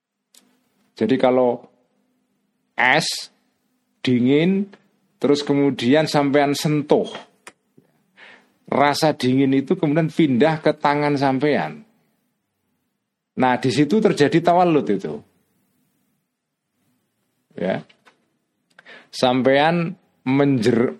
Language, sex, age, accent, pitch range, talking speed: Indonesian, male, 40-59, native, 125-195 Hz, 70 wpm